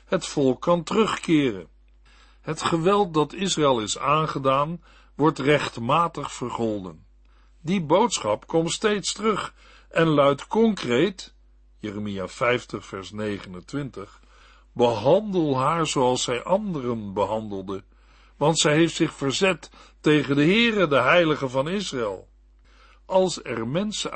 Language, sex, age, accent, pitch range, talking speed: Dutch, male, 60-79, Dutch, 125-175 Hz, 115 wpm